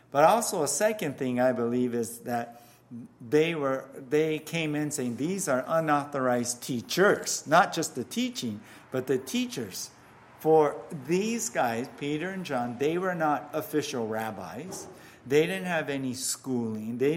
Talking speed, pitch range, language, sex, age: 150 wpm, 120-160 Hz, English, male, 50-69